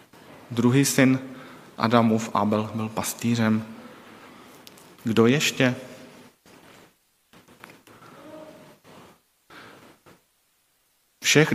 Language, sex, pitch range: Czech, male, 115-160 Hz